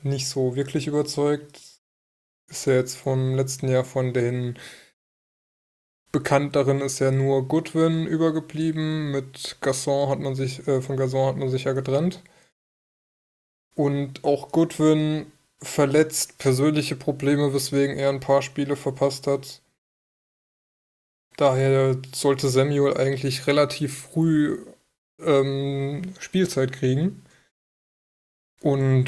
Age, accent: 20-39, German